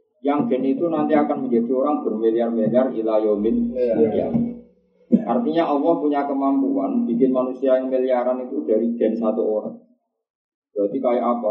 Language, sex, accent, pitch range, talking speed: Indonesian, male, native, 110-150 Hz, 140 wpm